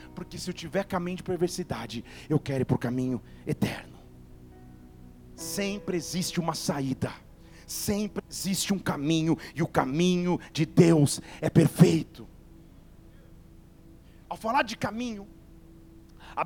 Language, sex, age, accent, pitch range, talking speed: Portuguese, male, 40-59, Brazilian, 165-270 Hz, 125 wpm